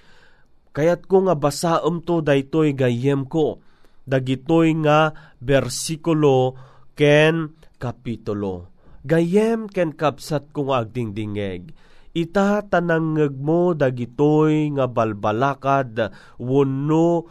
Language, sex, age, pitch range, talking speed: Filipino, male, 30-49, 125-155 Hz, 85 wpm